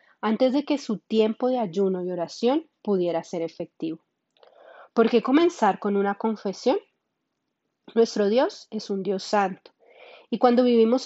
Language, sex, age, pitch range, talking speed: Spanish, female, 30-49, 190-250 Hz, 145 wpm